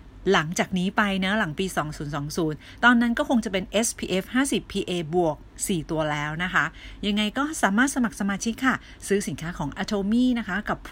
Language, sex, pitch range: Thai, female, 165-220 Hz